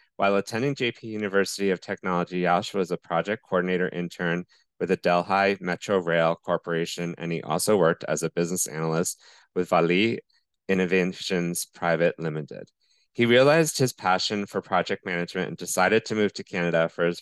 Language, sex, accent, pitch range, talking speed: English, male, American, 85-100 Hz, 160 wpm